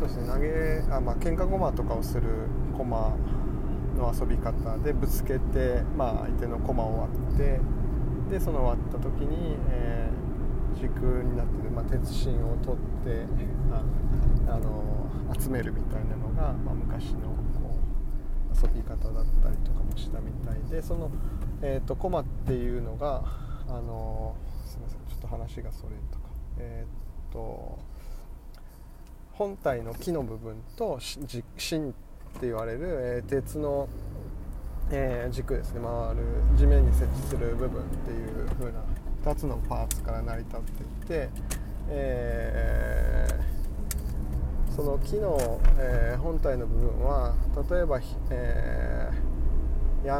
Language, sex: Japanese, male